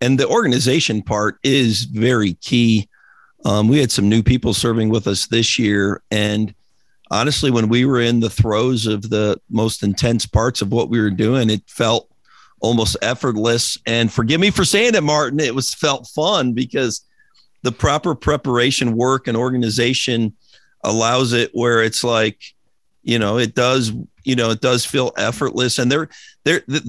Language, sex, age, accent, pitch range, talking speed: English, male, 50-69, American, 110-135 Hz, 170 wpm